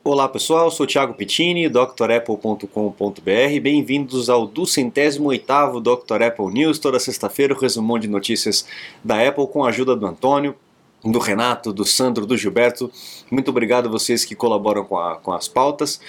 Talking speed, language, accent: 160 wpm, Portuguese, Brazilian